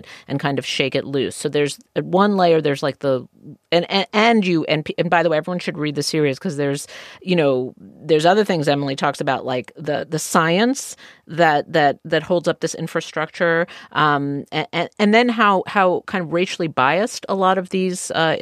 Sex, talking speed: female, 210 wpm